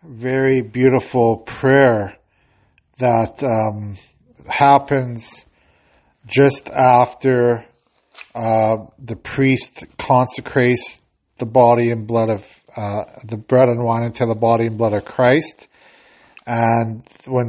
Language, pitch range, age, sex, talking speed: English, 115-135 Hz, 50-69, male, 105 wpm